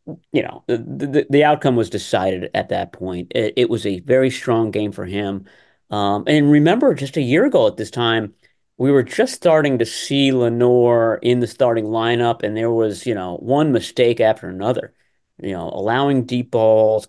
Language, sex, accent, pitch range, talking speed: English, male, American, 110-130 Hz, 195 wpm